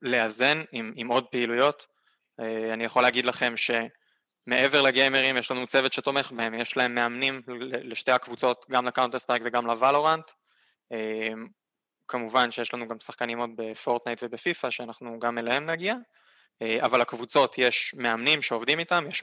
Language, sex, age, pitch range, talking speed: Hebrew, male, 20-39, 120-135 Hz, 150 wpm